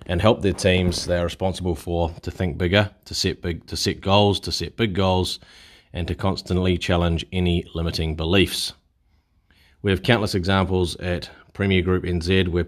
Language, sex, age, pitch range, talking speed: English, male, 30-49, 85-95 Hz, 175 wpm